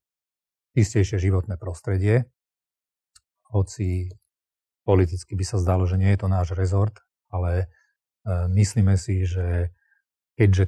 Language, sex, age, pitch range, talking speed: Slovak, male, 40-59, 95-110 Hz, 110 wpm